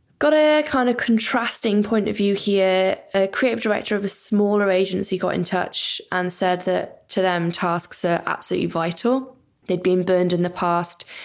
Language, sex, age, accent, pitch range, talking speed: English, female, 10-29, British, 175-215 Hz, 180 wpm